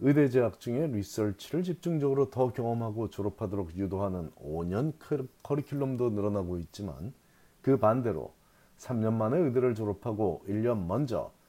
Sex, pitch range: male, 100-135 Hz